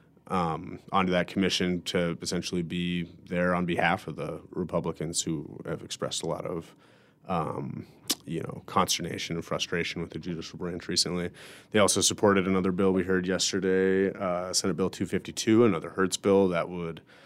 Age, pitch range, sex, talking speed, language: 30-49, 85-95 Hz, male, 165 wpm, English